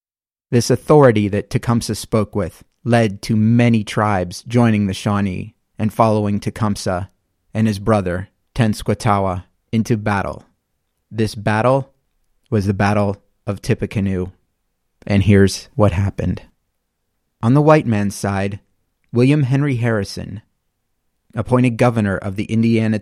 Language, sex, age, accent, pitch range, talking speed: English, male, 30-49, American, 100-120 Hz, 120 wpm